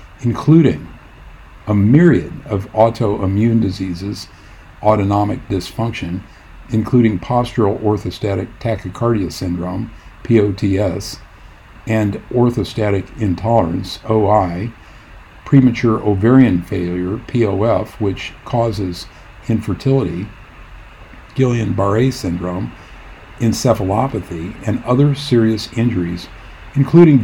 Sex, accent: male, American